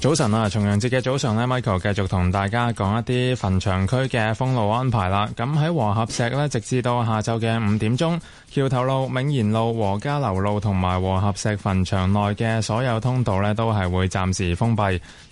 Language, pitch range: Chinese, 100-130 Hz